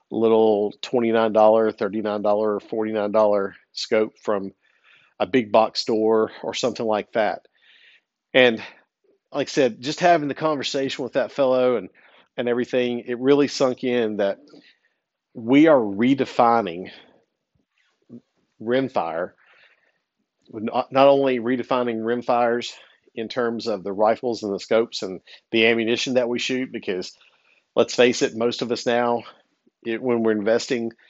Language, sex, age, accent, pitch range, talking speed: English, male, 50-69, American, 110-125 Hz, 130 wpm